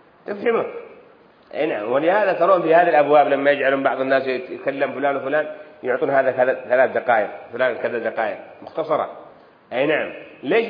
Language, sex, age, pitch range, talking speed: Arabic, male, 40-59, 160-230 Hz, 145 wpm